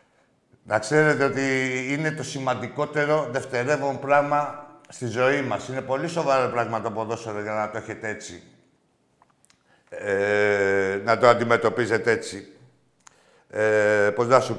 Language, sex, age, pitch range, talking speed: Greek, male, 60-79, 130-180 Hz, 130 wpm